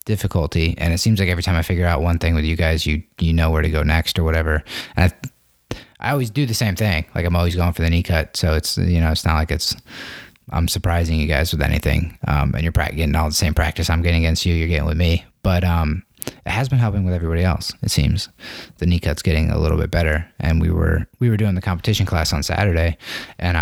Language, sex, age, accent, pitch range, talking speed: English, male, 20-39, American, 80-100 Hz, 255 wpm